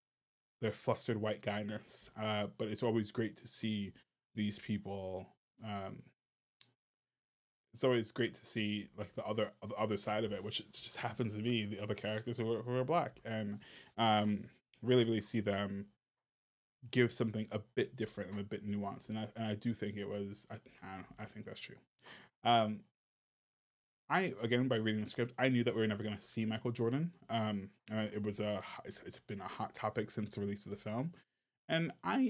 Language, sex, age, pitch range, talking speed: English, male, 20-39, 105-130 Hz, 200 wpm